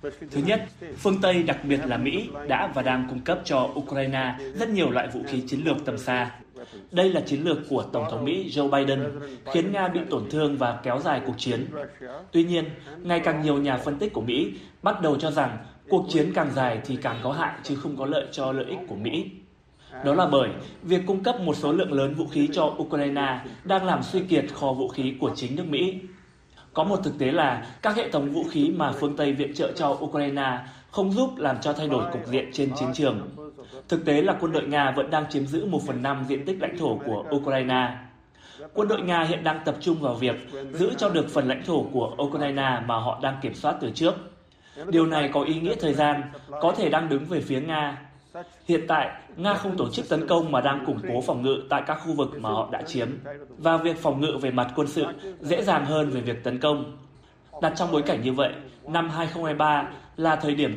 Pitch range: 135-165 Hz